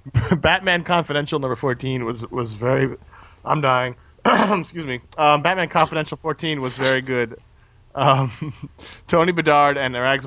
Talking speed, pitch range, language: 135 wpm, 100-135 Hz, English